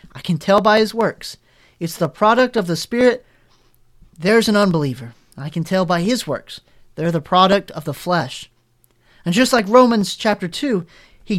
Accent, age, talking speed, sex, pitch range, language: American, 30-49, 180 wpm, male, 165-225 Hz, English